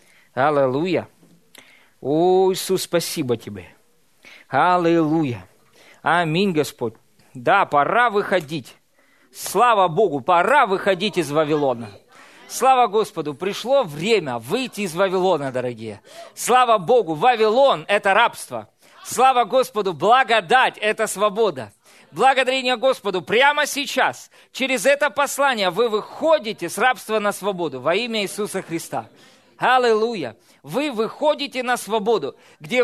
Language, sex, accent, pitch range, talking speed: Russian, male, native, 190-265 Hz, 110 wpm